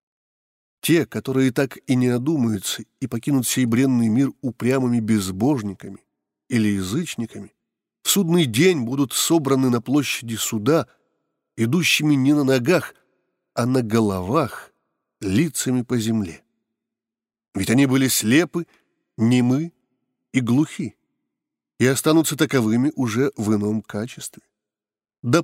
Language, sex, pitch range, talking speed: Russian, male, 115-150 Hz, 115 wpm